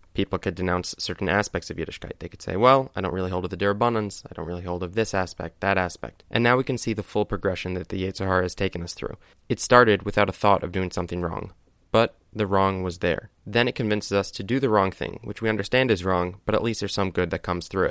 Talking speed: 265 wpm